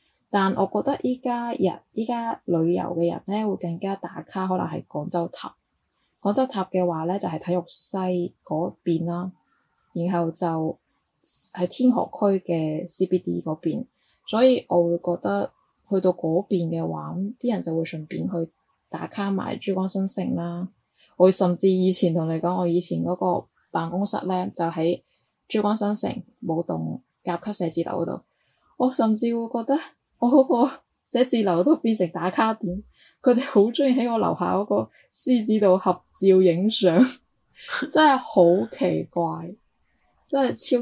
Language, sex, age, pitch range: Chinese, female, 20-39, 170-210 Hz